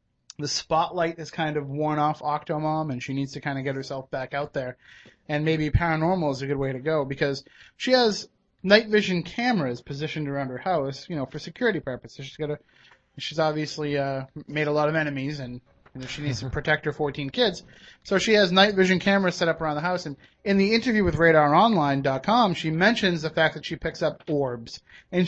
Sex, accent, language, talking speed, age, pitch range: male, American, English, 215 wpm, 30-49, 140-180 Hz